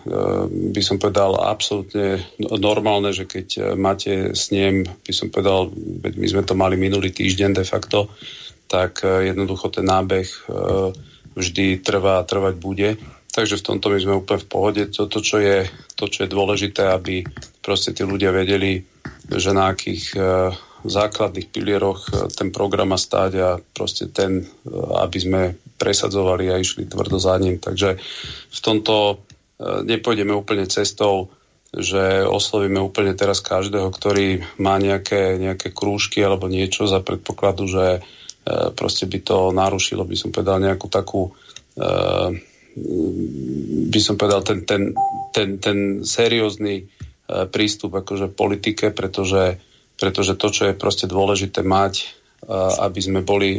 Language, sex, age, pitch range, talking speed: Slovak, male, 40-59, 95-100 Hz, 135 wpm